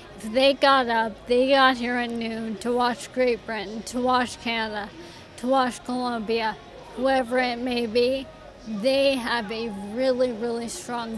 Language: English